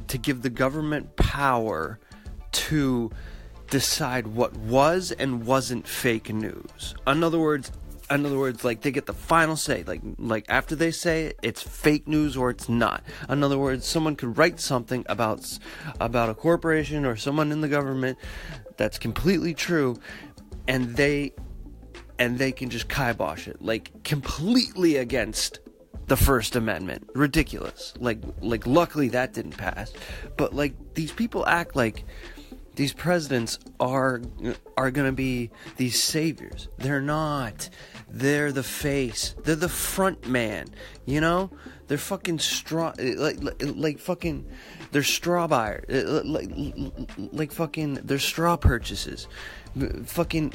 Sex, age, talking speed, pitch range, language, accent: male, 30-49, 140 wpm, 115-155 Hz, English, American